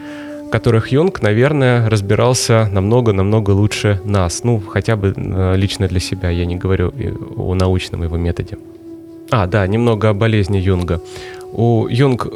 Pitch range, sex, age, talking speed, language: 105-135 Hz, male, 20-39, 140 wpm, Russian